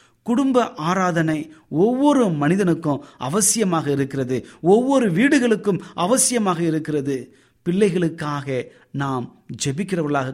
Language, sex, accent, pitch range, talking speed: Tamil, male, native, 135-180 Hz, 75 wpm